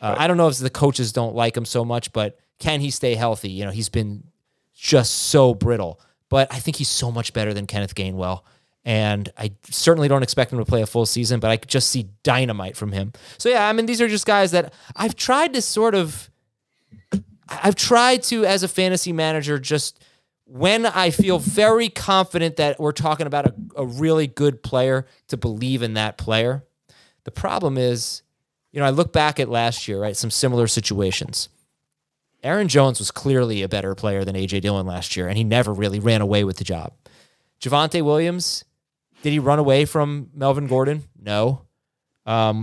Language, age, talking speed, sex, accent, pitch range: English, 30-49, 200 wpm, male, American, 110-155 Hz